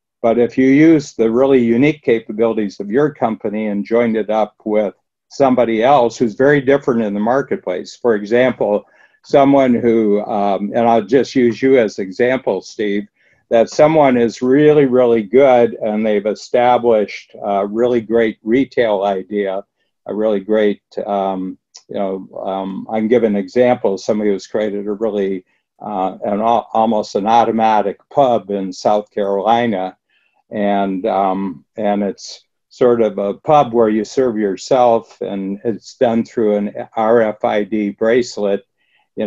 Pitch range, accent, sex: 100-120 Hz, American, male